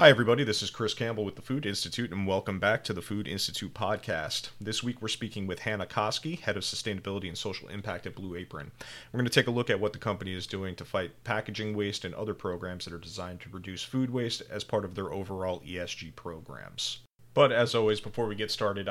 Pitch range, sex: 95-115 Hz, male